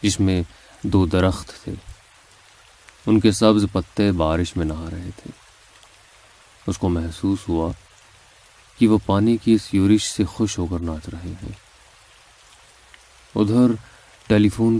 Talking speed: 140 wpm